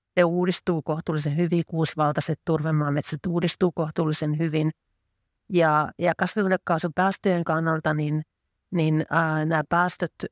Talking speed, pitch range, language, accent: 105 wpm, 150-170 Hz, Finnish, native